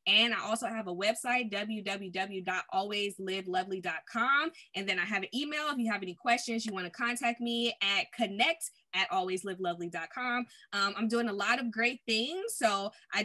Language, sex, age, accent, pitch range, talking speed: English, female, 20-39, American, 195-245 Hz, 170 wpm